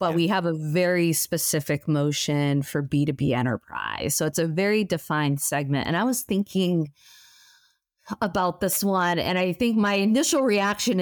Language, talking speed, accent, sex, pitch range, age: English, 160 wpm, American, female, 145-180 Hz, 30-49